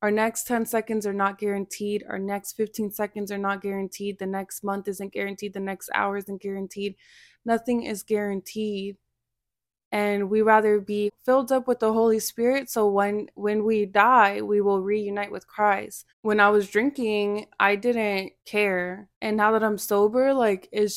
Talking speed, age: 175 wpm, 20-39